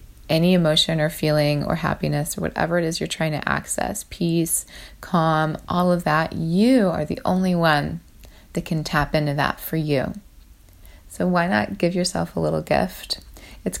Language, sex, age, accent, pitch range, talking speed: English, female, 20-39, American, 150-185 Hz, 175 wpm